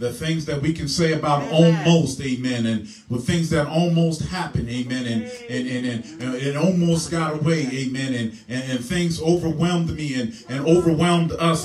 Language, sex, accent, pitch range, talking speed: English, male, American, 160-210 Hz, 190 wpm